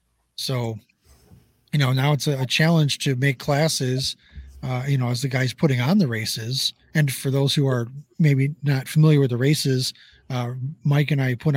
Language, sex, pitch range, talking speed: English, male, 125-150 Hz, 190 wpm